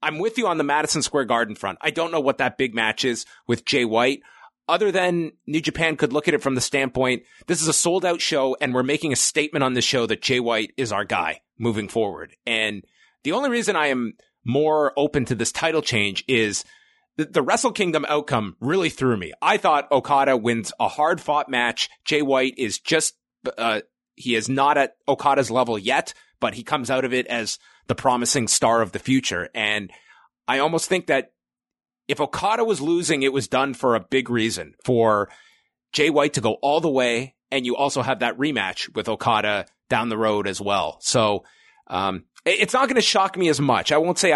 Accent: American